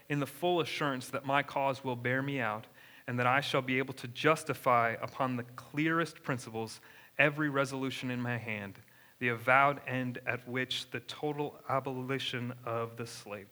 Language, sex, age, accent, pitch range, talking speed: English, male, 30-49, American, 120-140 Hz, 175 wpm